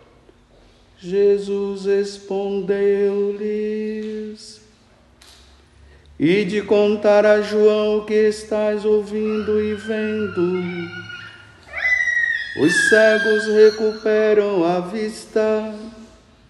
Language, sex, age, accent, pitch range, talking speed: Portuguese, male, 50-69, Brazilian, 200-215 Hz, 65 wpm